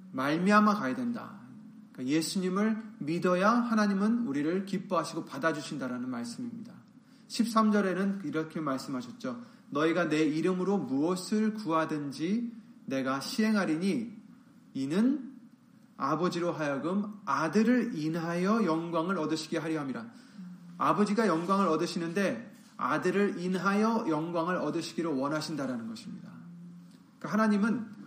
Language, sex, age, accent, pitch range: Korean, male, 30-49, native, 170-235 Hz